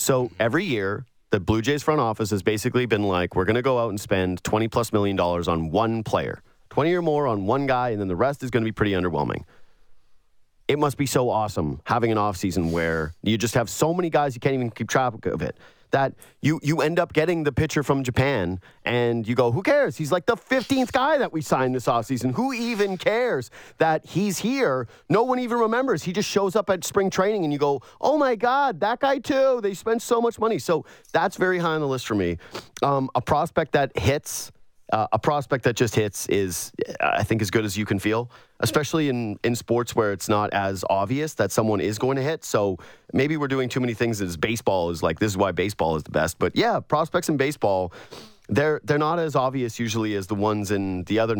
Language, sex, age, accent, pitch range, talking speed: English, male, 30-49, American, 110-155 Hz, 230 wpm